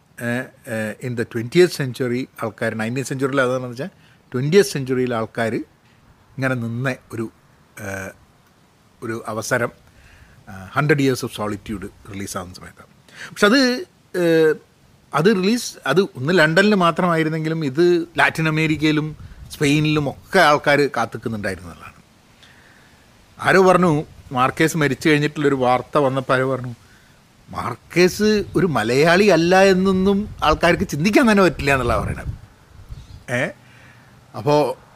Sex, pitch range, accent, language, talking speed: male, 120-165 Hz, native, Malayalam, 95 wpm